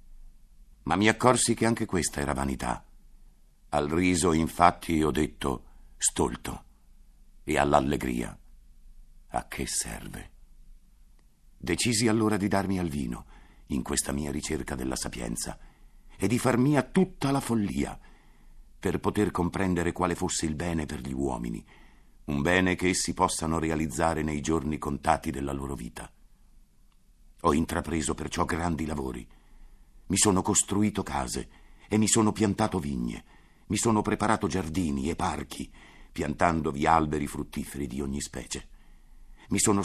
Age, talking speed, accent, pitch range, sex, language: 50-69, 135 wpm, native, 75-105 Hz, male, Italian